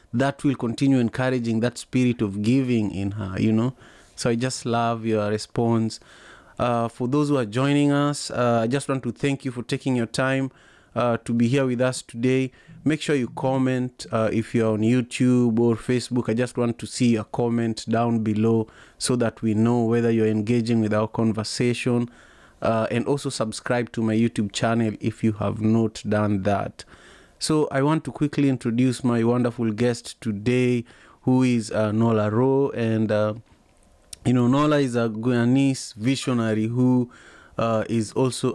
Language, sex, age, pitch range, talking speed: English, male, 30-49, 110-125 Hz, 180 wpm